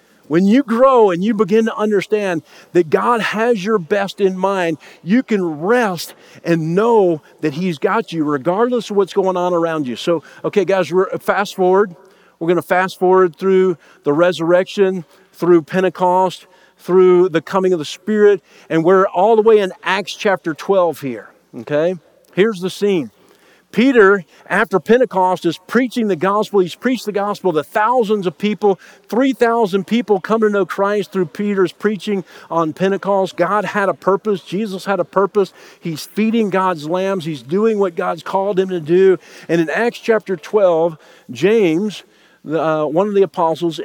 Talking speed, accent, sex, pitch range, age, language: 170 wpm, American, male, 170-205 Hz, 50-69, English